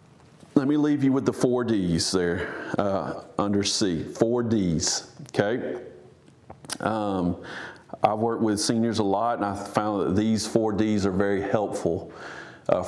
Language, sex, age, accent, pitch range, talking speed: English, male, 40-59, American, 100-125 Hz, 155 wpm